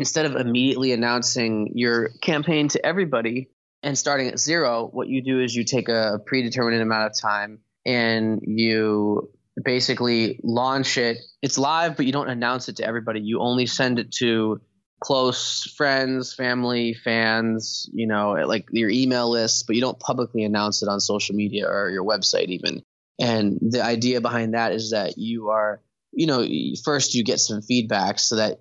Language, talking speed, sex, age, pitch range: English, 175 wpm, male, 20-39, 110-125 Hz